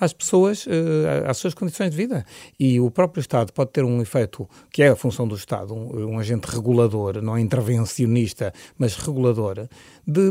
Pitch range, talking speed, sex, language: 115-150 Hz, 175 wpm, male, Portuguese